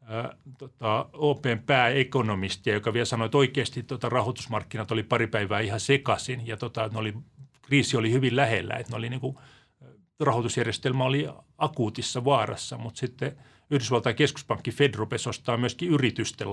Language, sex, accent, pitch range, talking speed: Finnish, male, native, 110-135 Hz, 140 wpm